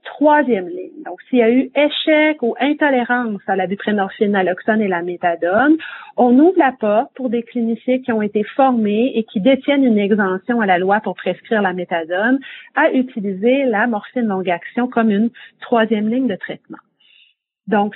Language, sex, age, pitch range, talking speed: English, female, 40-59, 205-265 Hz, 175 wpm